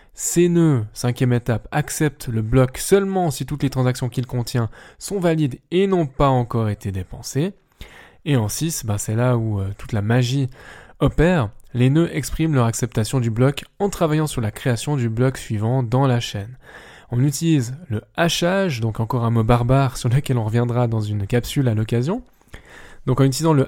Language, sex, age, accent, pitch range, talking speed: French, male, 20-39, French, 120-155 Hz, 185 wpm